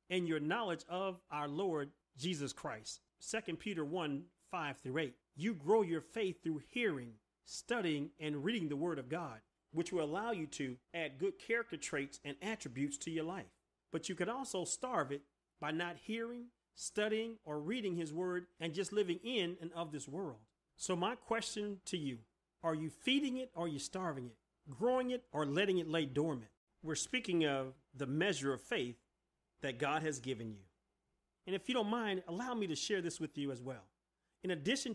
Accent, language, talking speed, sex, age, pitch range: American, English, 190 wpm, male, 40-59, 145-200 Hz